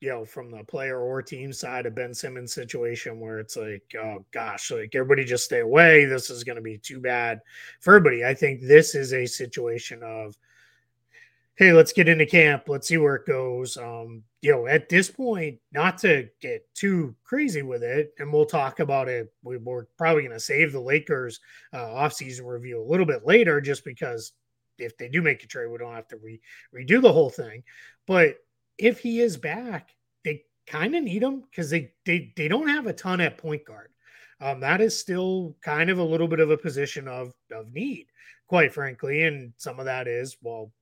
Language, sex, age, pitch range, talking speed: English, male, 30-49, 125-170 Hz, 210 wpm